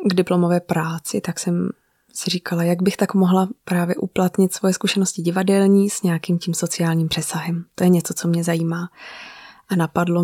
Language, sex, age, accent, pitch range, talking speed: Czech, female, 20-39, native, 175-195 Hz, 170 wpm